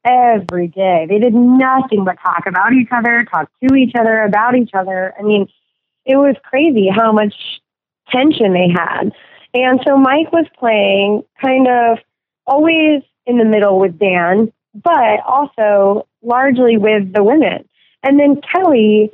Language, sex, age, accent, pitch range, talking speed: English, female, 20-39, American, 200-255 Hz, 155 wpm